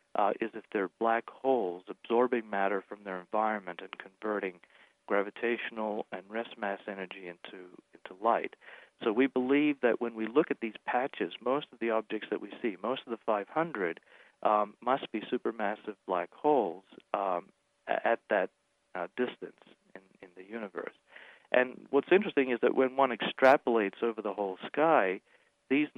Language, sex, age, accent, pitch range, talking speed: English, male, 40-59, American, 105-125 Hz, 160 wpm